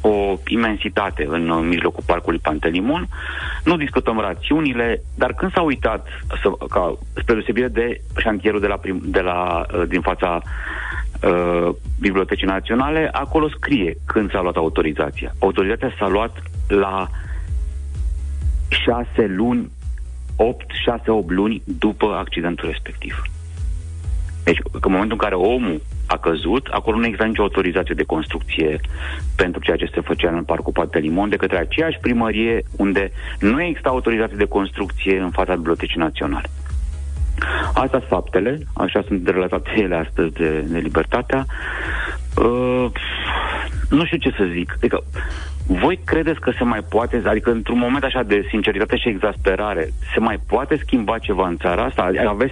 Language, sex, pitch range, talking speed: Romanian, male, 80-110 Hz, 140 wpm